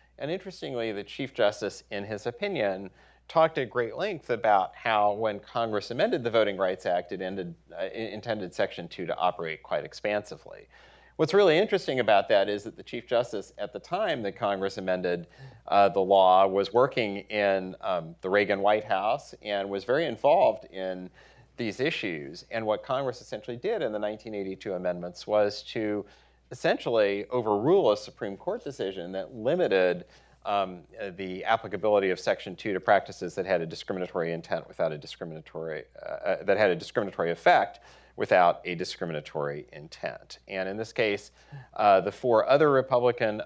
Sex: male